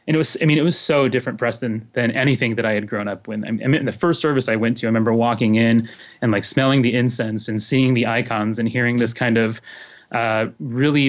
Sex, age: male, 20-39